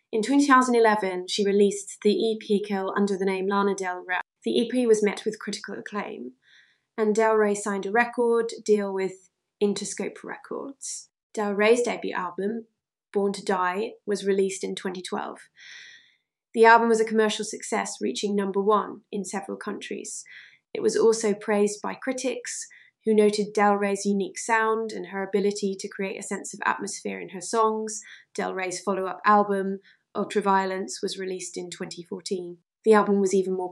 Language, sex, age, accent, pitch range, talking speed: English, female, 20-39, British, 195-220 Hz, 160 wpm